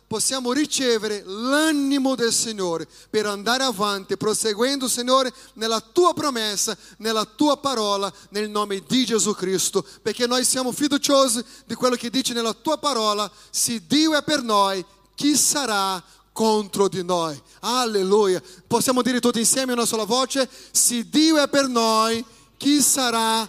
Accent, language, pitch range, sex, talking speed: Brazilian, Italian, 220-275 Hz, male, 150 wpm